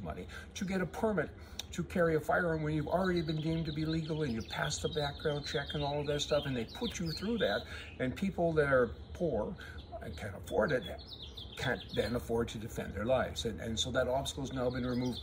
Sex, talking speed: male, 230 wpm